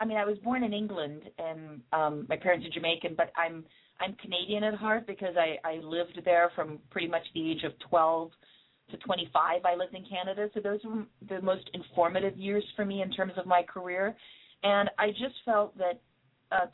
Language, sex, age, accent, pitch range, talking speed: English, female, 40-59, American, 160-205 Hz, 205 wpm